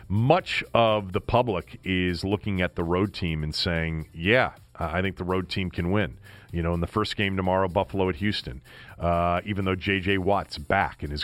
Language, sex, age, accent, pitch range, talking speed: English, male, 40-59, American, 90-115 Hz, 205 wpm